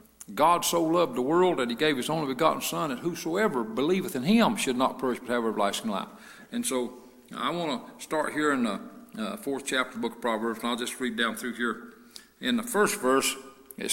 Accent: American